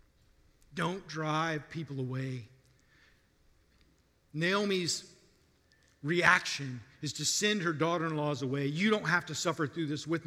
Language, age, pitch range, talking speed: English, 50-69, 110-150 Hz, 115 wpm